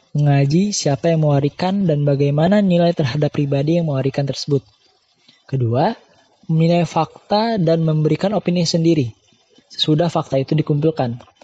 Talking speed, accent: 120 wpm, native